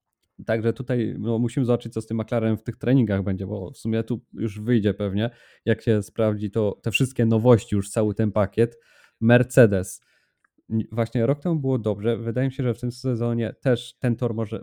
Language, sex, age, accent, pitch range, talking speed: Polish, male, 20-39, native, 110-125 Hz, 195 wpm